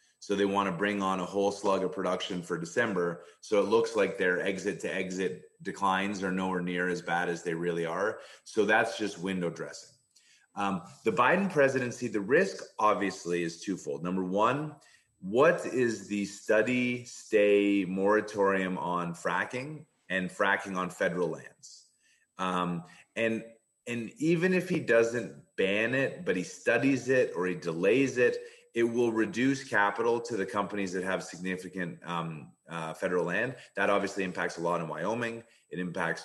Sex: male